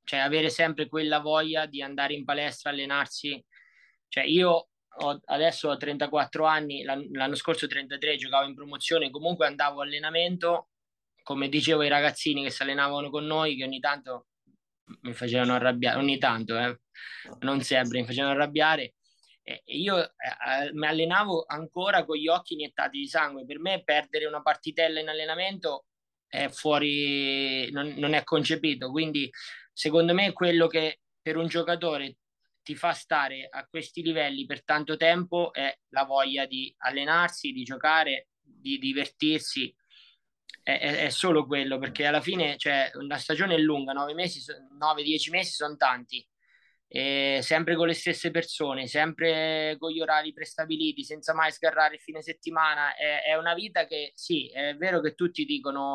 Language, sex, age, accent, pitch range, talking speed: Italian, male, 20-39, native, 140-165 Hz, 155 wpm